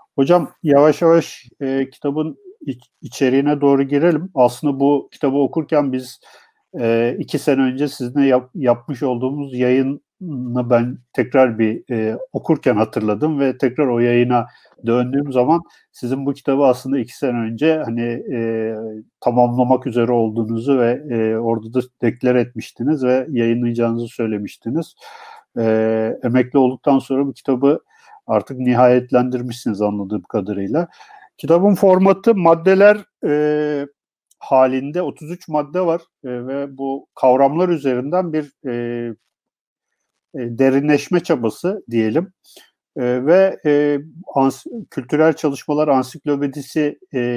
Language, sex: Turkish, male